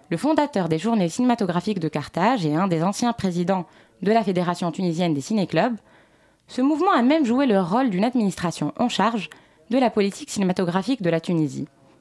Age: 20-39